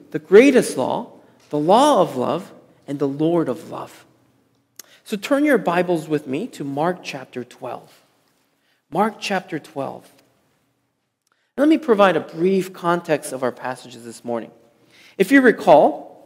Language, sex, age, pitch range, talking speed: English, male, 40-59, 160-215 Hz, 145 wpm